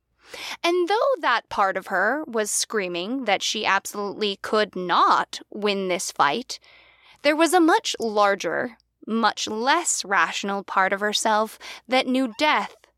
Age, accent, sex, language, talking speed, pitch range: 10-29, American, female, English, 140 wpm, 185-265 Hz